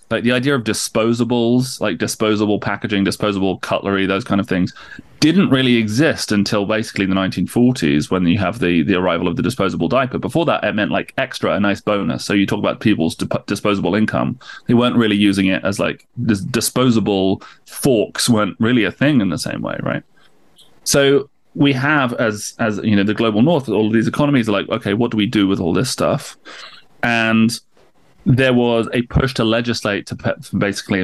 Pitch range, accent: 100-115 Hz, British